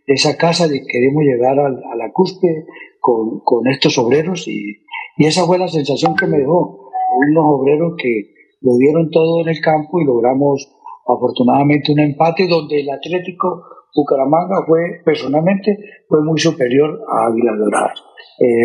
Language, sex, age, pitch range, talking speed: Spanish, male, 50-69, 135-175 Hz, 160 wpm